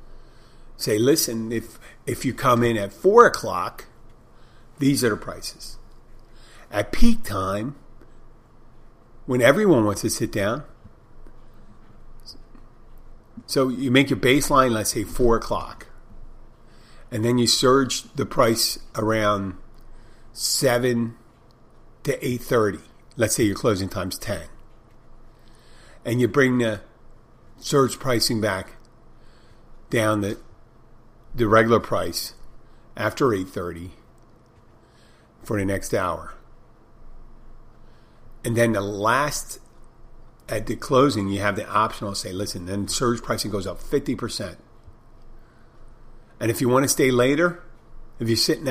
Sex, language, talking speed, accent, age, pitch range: male, English, 120 wpm, American, 50-69, 110-125 Hz